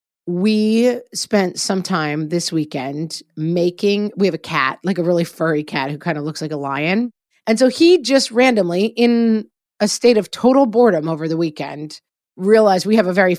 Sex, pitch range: female, 175-235 Hz